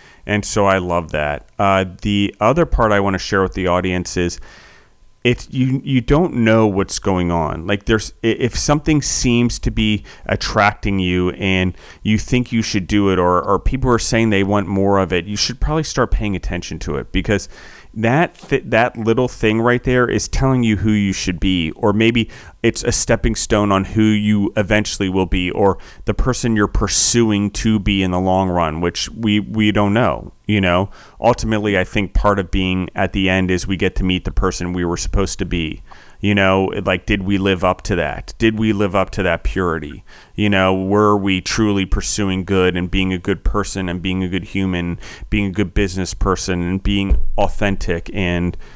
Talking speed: 205 wpm